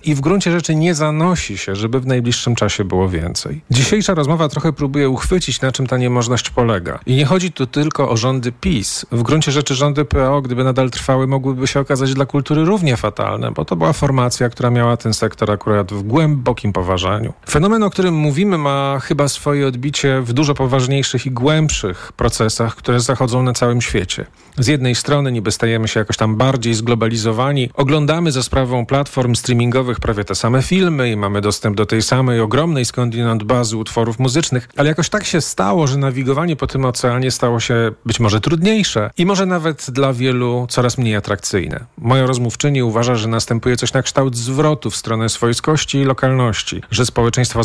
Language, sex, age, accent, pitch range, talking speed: Polish, male, 40-59, native, 115-145 Hz, 185 wpm